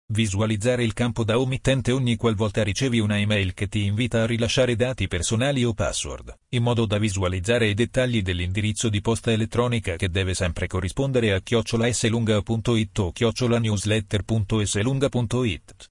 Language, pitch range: Italian, 105-120 Hz